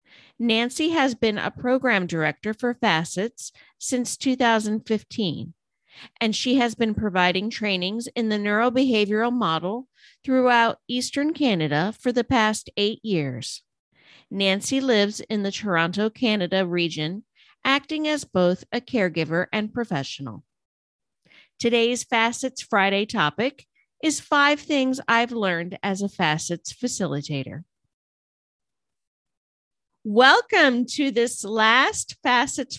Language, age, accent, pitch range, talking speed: English, 50-69, American, 190-260 Hz, 110 wpm